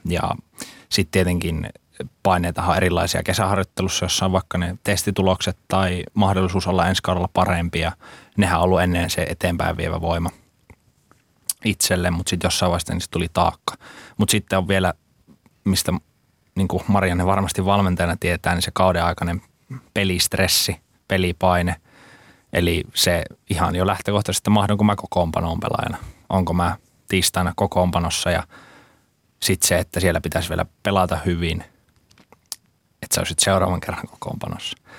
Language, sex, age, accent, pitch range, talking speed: Finnish, male, 20-39, native, 85-95 Hz, 130 wpm